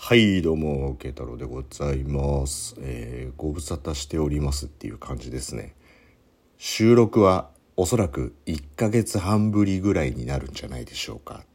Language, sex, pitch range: Japanese, male, 70-120 Hz